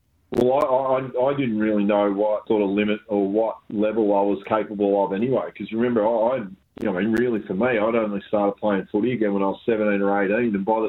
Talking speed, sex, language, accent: 250 wpm, male, English, Australian